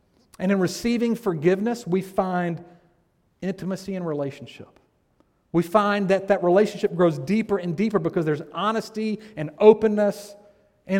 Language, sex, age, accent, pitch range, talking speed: English, male, 40-59, American, 150-200 Hz, 130 wpm